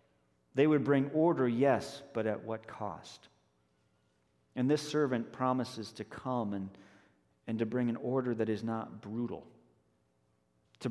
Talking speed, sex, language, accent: 145 wpm, male, English, American